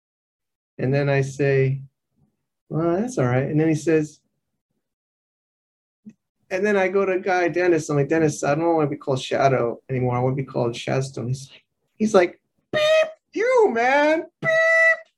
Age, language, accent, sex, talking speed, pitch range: 30-49, English, American, male, 180 wpm, 130-170 Hz